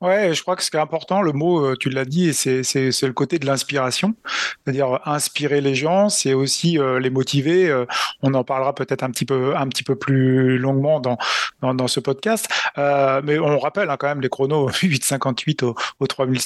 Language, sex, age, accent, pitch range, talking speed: French, male, 30-49, French, 135-170 Hz, 205 wpm